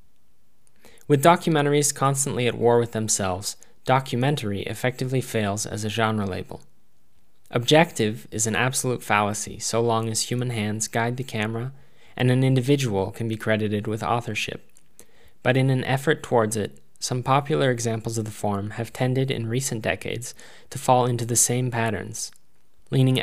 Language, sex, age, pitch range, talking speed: English, male, 10-29, 110-130 Hz, 150 wpm